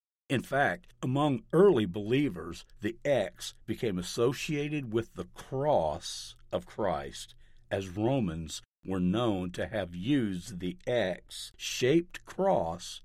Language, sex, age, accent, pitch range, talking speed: English, male, 50-69, American, 95-140 Hz, 110 wpm